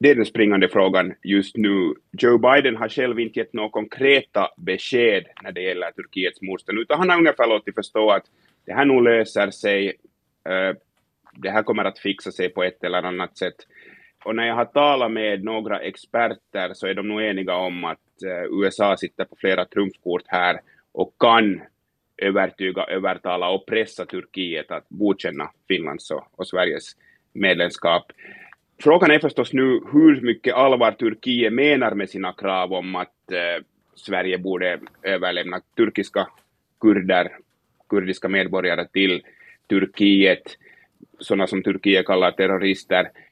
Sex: male